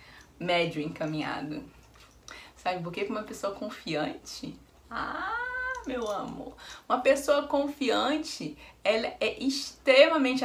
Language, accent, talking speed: Portuguese, Brazilian, 100 wpm